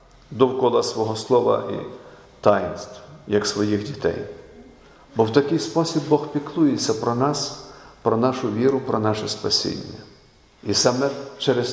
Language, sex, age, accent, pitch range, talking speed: Ukrainian, male, 50-69, native, 120-145 Hz, 130 wpm